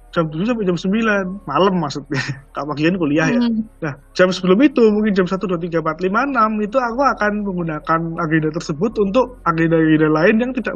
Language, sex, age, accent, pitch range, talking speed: Indonesian, male, 20-39, native, 155-200 Hz, 190 wpm